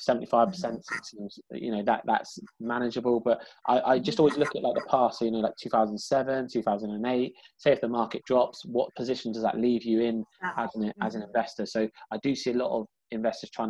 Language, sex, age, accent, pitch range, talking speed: English, male, 20-39, British, 110-130 Hz, 195 wpm